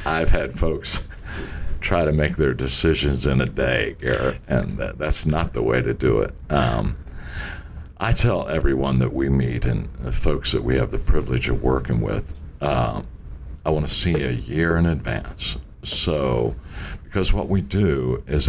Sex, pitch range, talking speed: male, 65-85 Hz, 170 wpm